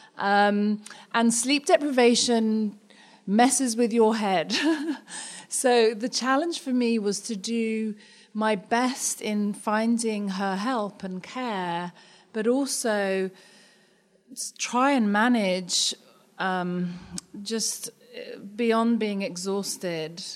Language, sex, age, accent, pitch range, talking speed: English, female, 30-49, British, 185-225 Hz, 100 wpm